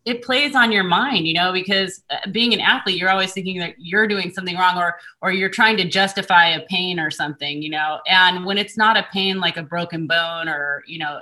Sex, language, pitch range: female, English, 155-190 Hz